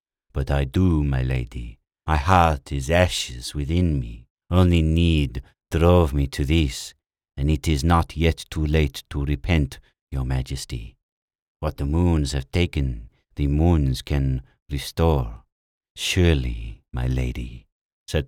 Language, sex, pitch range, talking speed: English, male, 65-80 Hz, 135 wpm